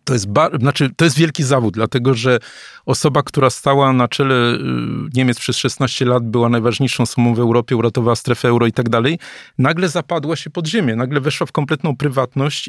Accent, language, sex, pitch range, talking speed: native, Polish, male, 125-150 Hz, 190 wpm